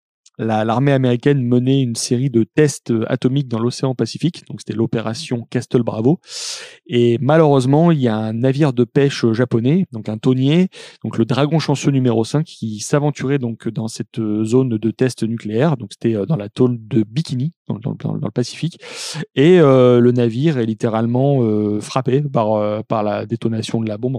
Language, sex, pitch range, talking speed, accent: French, male, 110-135 Hz, 180 wpm, French